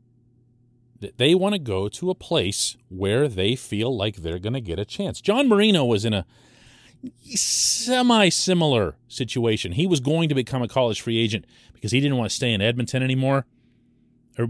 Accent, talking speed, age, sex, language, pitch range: American, 180 wpm, 40-59, male, English, 105-160 Hz